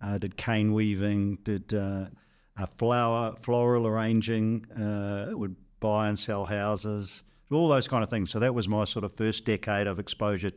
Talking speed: 170 wpm